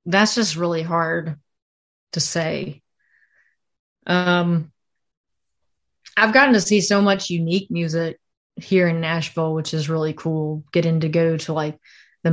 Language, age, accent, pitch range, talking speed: English, 30-49, American, 160-190 Hz, 135 wpm